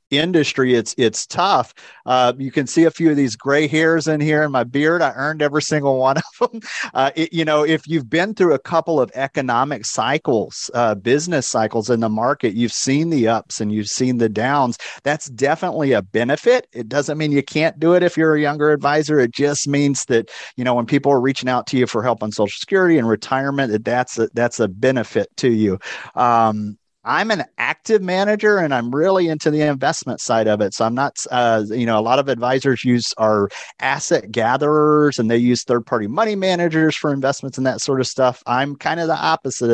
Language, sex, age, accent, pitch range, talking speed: English, male, 40-59, American, 120-150 Hz, 215 wpm